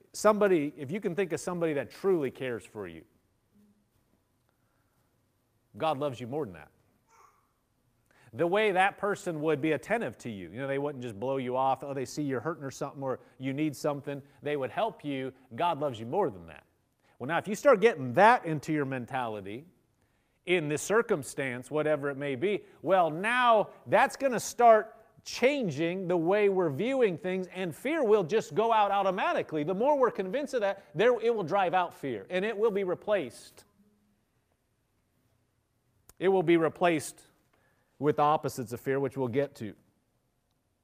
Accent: American